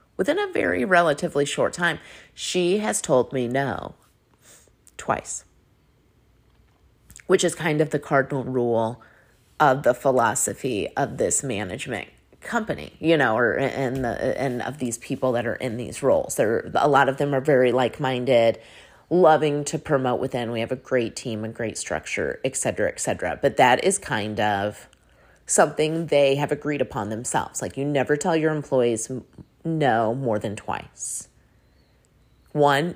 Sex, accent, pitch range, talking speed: female, American, 125-165 Hz, 160 wpm